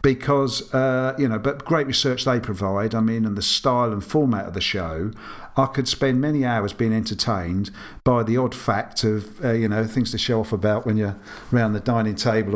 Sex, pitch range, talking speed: male, 105-135 Hz, 215 wpm